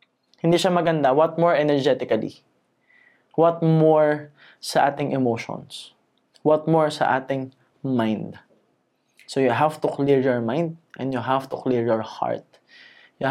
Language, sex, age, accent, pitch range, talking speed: Filipino, male, 20-39, native, 135-175 Hz, 140 wpm